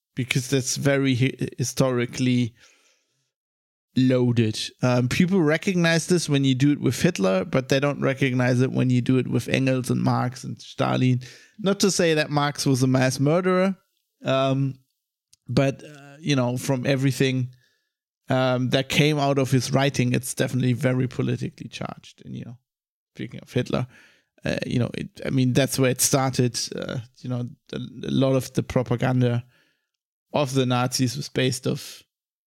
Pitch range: 125-140 Hz